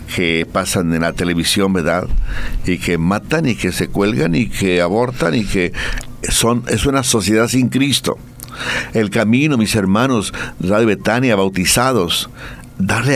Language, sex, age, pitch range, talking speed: Spanish, male, 60-79, 95-125 Hz, 145 wpm